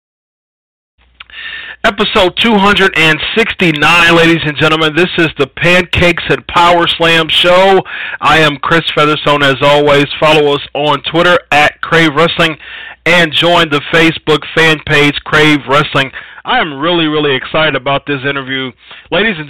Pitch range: 140-170 Hz